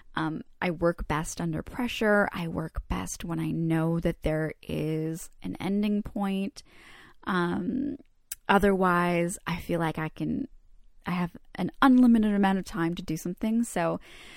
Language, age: English, 20-39